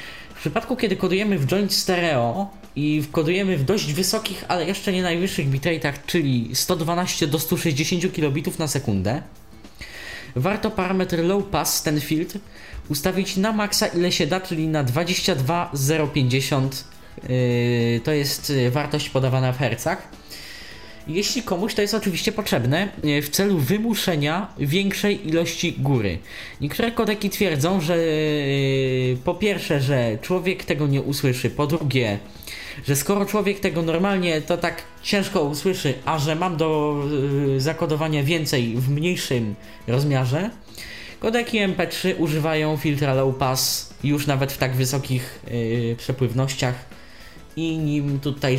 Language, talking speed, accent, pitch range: Polish, 130 wpm, native, 135-185 Hz